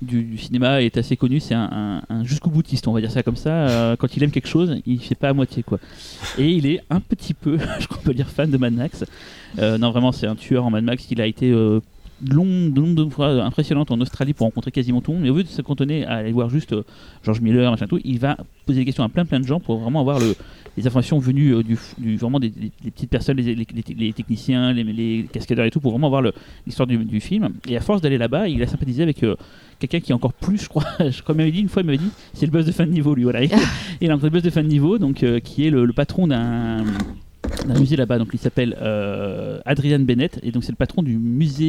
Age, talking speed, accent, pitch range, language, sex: 30-49, 285 wpm, French, 120-155 Hz, French, male